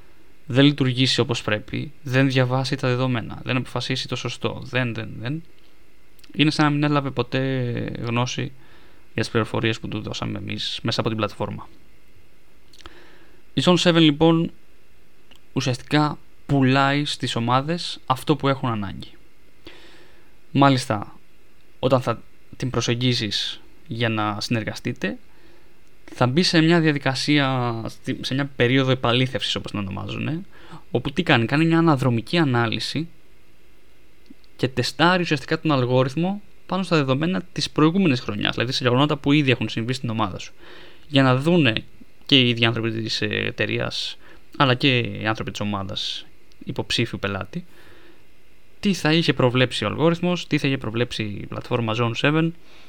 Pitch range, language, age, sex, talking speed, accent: 115-150 Hz, Greek, 20-39, male, 140 wpm, Spanish